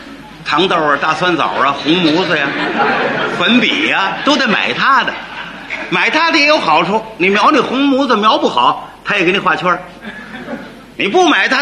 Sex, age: male, 50-69